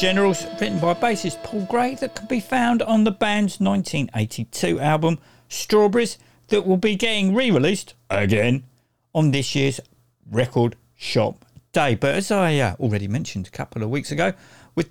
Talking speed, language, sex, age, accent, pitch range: 160 wpm, English, male, 50-69, British, 125-200 Hz